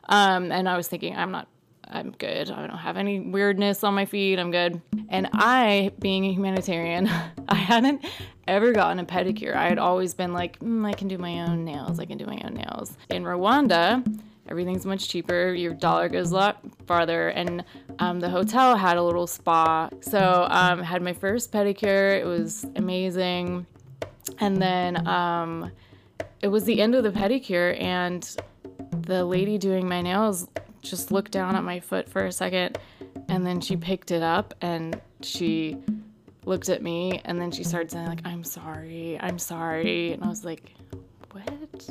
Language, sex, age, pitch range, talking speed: English, female, 20-39, 170-205 Hz, 180 wpm